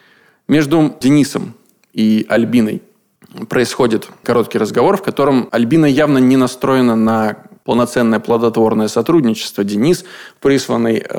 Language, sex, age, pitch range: Russian, male, 20-39, 115-155 Hz